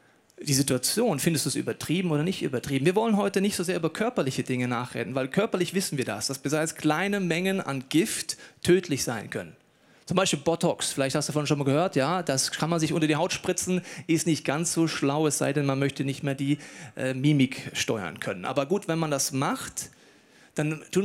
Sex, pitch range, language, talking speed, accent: male, 145-185 Hz, German, 220 wpm, German